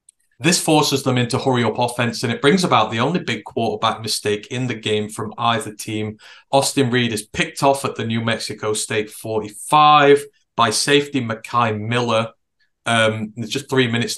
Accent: British